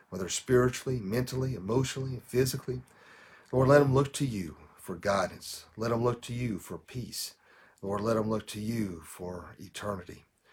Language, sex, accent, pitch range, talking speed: English, male, American, 100-130 Hz, 160 wpm